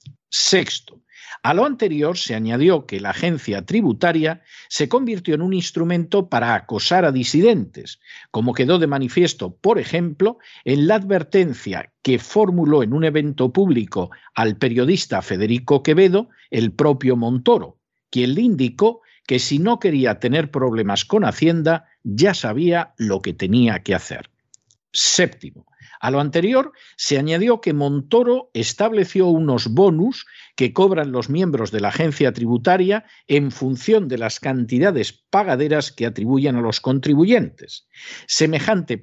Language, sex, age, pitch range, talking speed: Spanish, male, 50-69, 125-190 Hz, 140 wpm